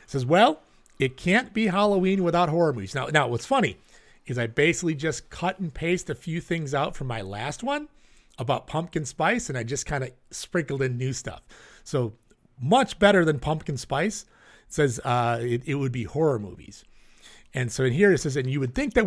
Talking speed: 210 wpm